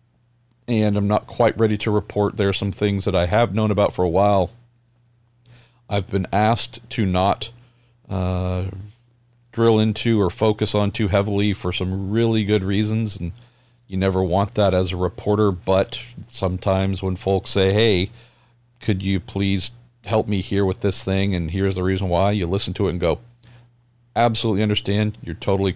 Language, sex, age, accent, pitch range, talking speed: English, male, 50-69, American, 95-120 Hz, 175 wpm